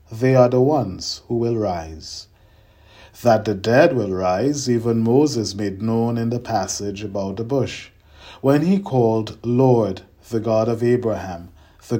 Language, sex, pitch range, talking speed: English, male, 95-125 Hz, 155 wpm